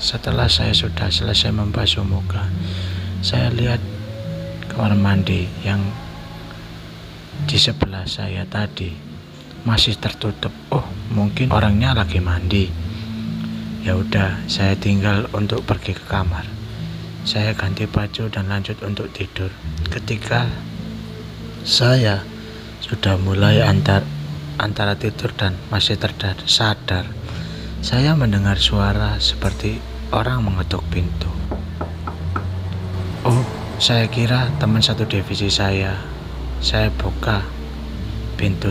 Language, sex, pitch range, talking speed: Indonesian, male, 90-110 Hz, 100 wpm